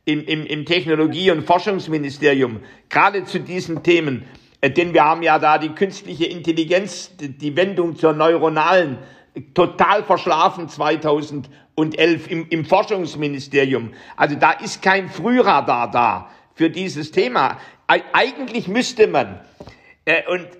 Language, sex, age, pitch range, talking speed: German, male, 60-79, 160-195 Hz, 115 wpm